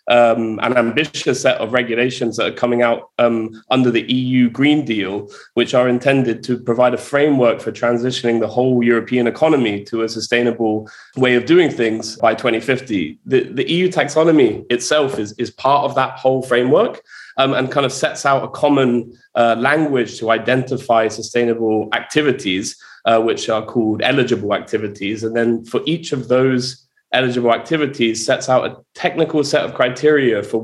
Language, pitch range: English, 115-130 Hz